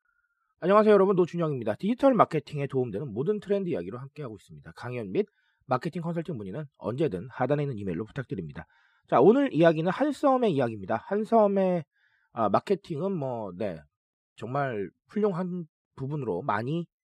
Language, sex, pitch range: Korean, male, 140-210 Hz